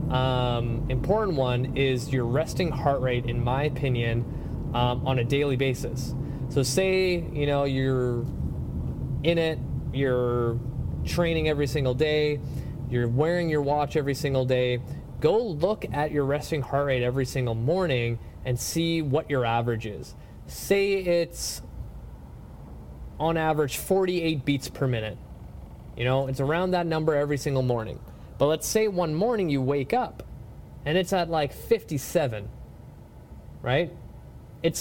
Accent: American